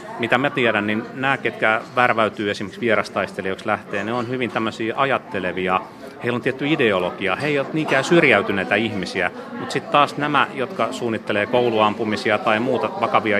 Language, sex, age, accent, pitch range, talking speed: Finnish, male, 30-49, native, 105-125 Hz, 155 wpm